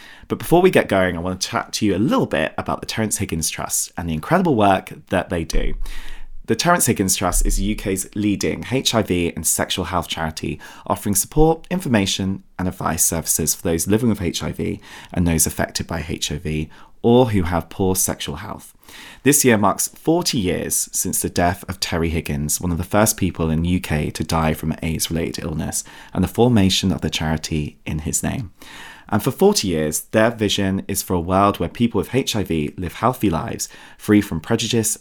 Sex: male